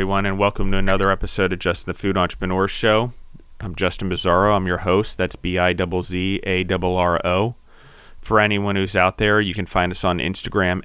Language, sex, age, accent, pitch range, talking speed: English, male, 30-49, American, 85-95 Hz, 170 wpm